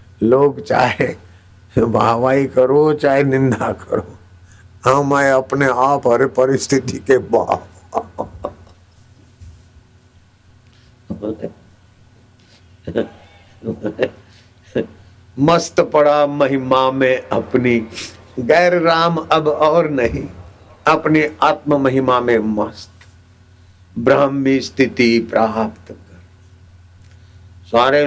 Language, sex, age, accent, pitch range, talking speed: Hindi, male, 60-79, native, 100-150 Hz, 75 wpm